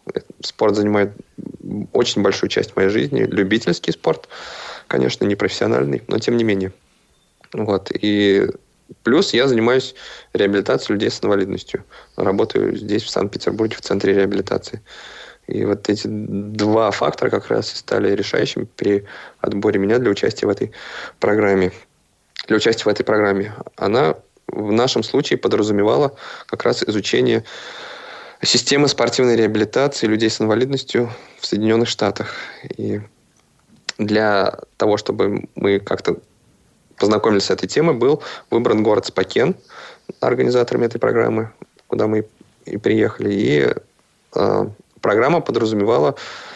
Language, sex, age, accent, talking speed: Russian, male, 20-39, native, 120 wpm